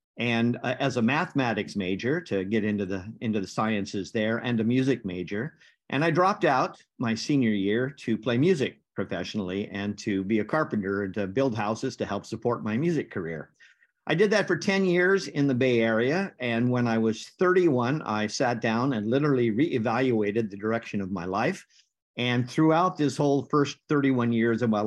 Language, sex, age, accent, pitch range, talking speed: English, male, 50-69, American, 110-140 Hz, 190 wpm